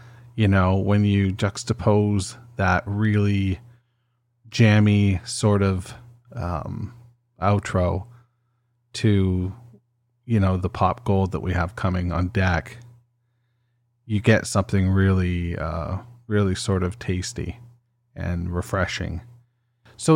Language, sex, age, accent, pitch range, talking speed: English, male, 30-49, American, 95-120 Hz, 105 wpm